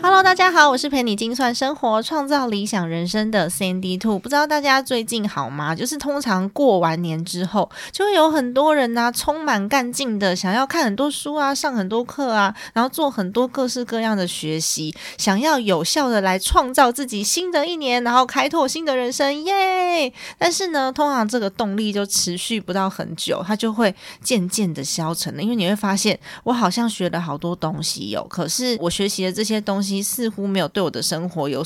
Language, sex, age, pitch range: Chinese, female, 20-39, 180-260 Hz